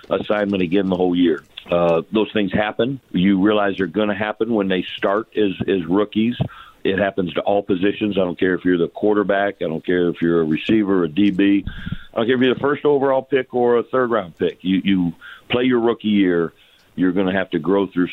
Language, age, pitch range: English, 50-69, 85-105 Hz